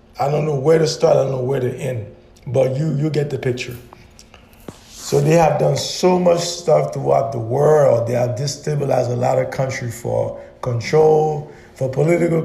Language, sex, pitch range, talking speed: English, male, 125-160 Hz, 190 wpm